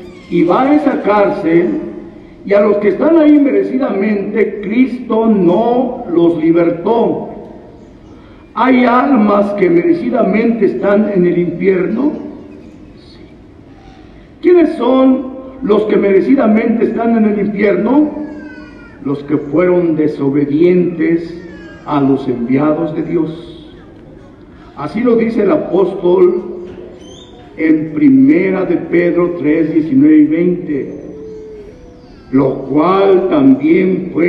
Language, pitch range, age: Spanish, 175-250 Hz, 50-69